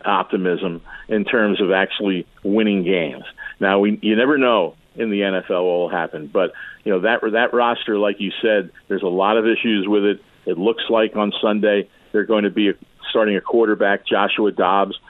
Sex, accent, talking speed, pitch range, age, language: male, American, 190 wpm, 100-115 Hz, 50-69, English